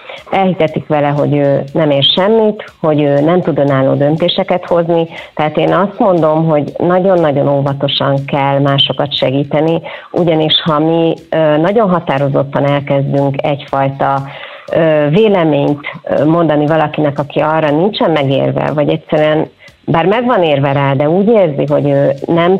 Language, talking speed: Hungarian, 135 wpm